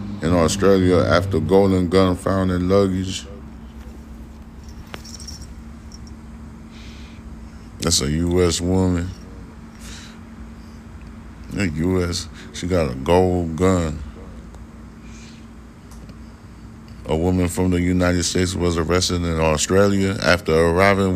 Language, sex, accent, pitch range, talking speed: English, male, American, 80-95 Hz, 95 wpm